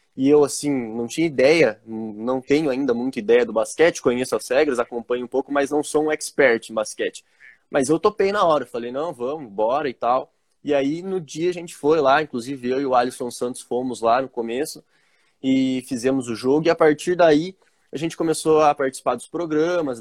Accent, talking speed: Brazilian, 210 wpm